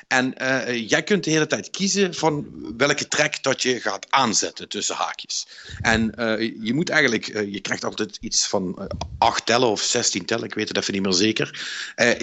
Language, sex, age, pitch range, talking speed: Dutch, male, 50-69, 100-140 Hz, 205 wpm